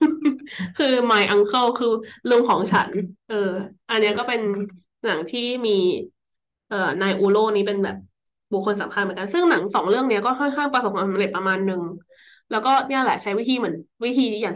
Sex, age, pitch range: female, 20-39, 200-250 Hz